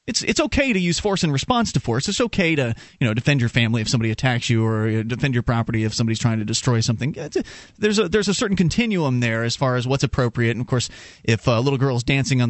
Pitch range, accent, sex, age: 120-165 Hz, American, male, 30-49